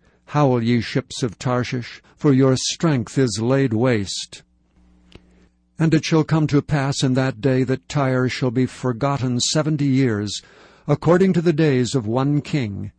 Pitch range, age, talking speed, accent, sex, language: 125-145 Hz, 60-79, 155 wpm, American, male, English